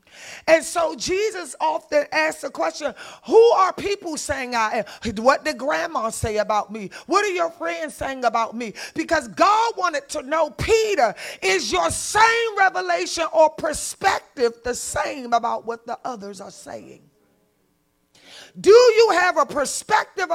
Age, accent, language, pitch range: 40-59, American, English, 230-345 Hz